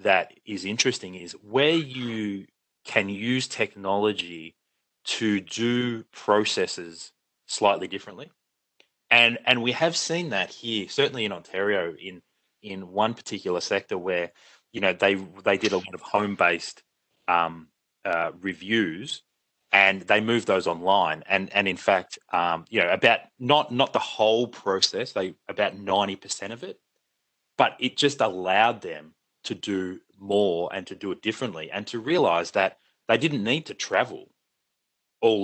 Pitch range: 95-120 Hz